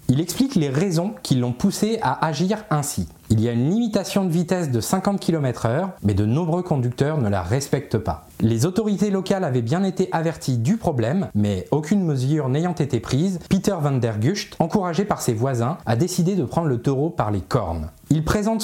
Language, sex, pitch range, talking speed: French, male, 120-175 Hz, 205 wpm